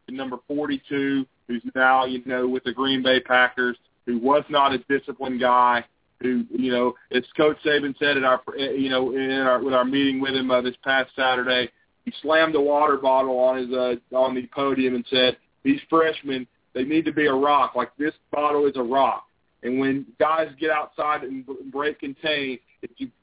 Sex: male